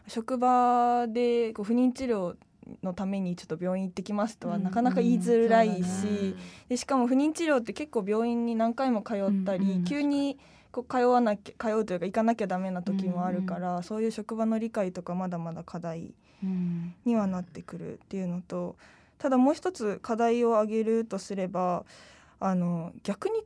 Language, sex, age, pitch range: Japanese, female, 20-39, 185-245 Hz